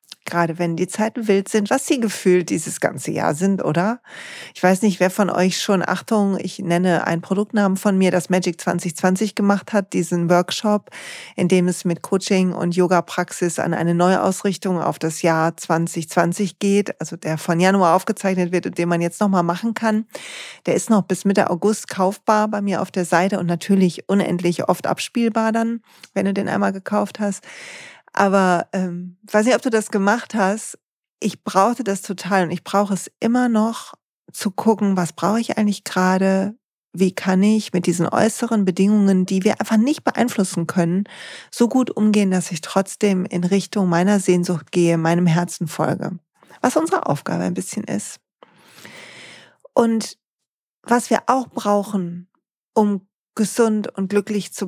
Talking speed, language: 170 wpm, German